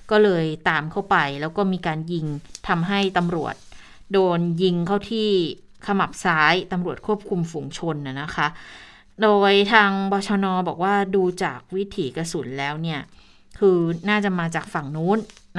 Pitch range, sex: 170-210 Hz, female